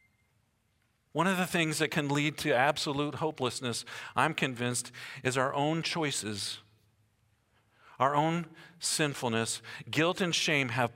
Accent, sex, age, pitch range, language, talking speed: American, male, 50-69, 110-145 Hz, English, 125 wpm